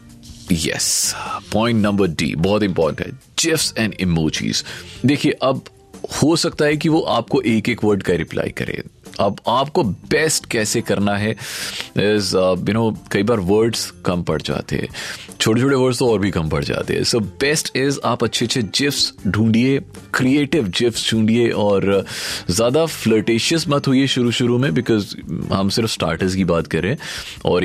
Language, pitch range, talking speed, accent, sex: Hindi, 95-125 Hz, 175 wpm, native, male